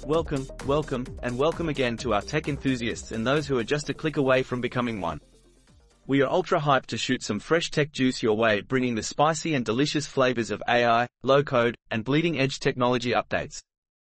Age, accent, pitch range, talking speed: 30-49, Australian, 120-145 Hz, 190 wpm